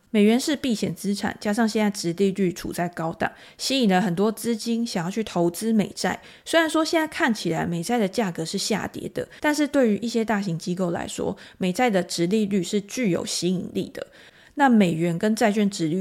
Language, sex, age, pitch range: Chinese, female, 20-39, 180-225 Hz